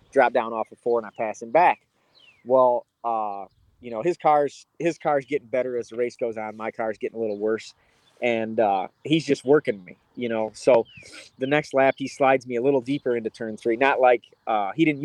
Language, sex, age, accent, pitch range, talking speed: English, male, 30-49, American, 115-140 Hz, 225 wpm